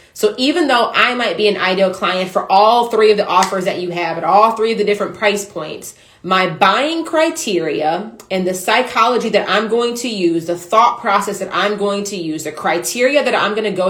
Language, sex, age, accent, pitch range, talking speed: English, female, 30-49, American, 180-220 Hz, 225 wpm